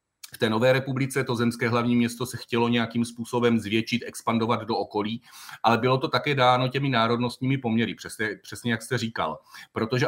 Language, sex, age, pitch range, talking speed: Slovak, male, 40-59, 115-140 Hz, 180 wpm